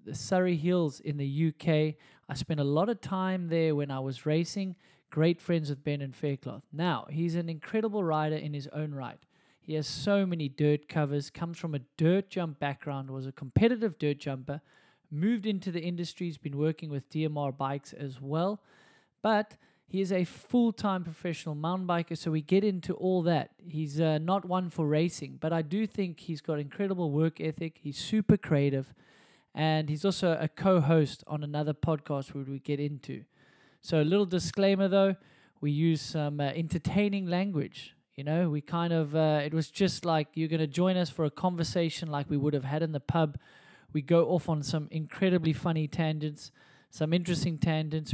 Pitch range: 145-180 Hz